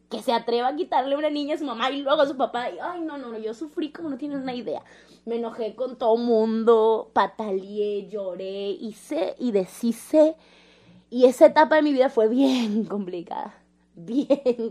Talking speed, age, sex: 200 wpm, 20-39, female